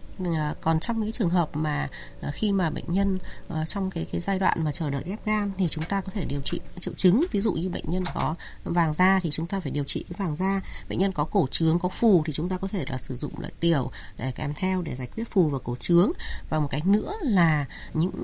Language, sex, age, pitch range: Vietnamese, female, 20-39, 160-205 Hz